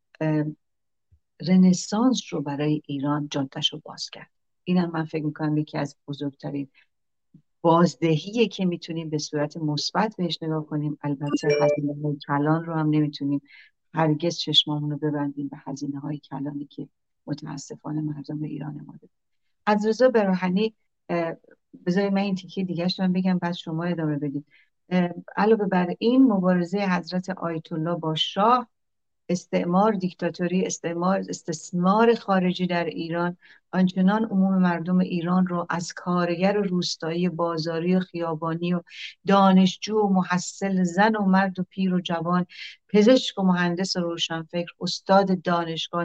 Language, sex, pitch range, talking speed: Persian, female, 155-185 Hz, 130 wpm